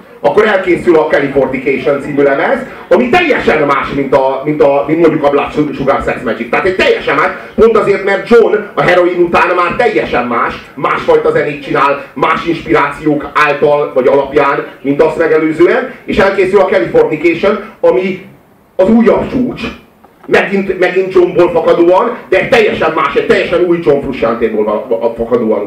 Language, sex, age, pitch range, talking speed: Hungarian, male, 30-49, 135-195 Hz, 155 wpm